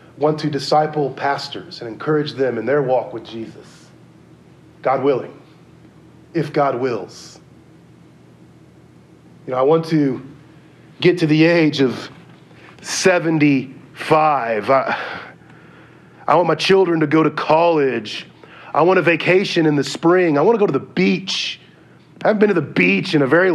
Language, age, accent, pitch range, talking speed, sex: English, 30-49, American, 130-165 Hz, 155 wpm, male